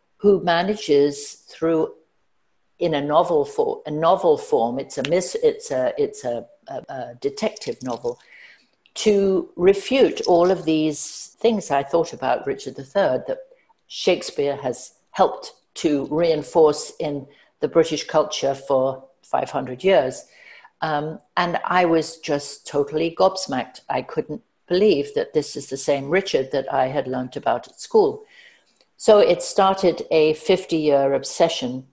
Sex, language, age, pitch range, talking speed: female, English, 60-79, 145-220 Hz, 140 wpm